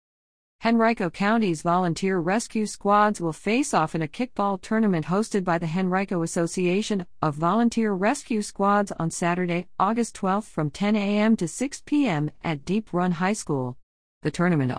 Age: 50-69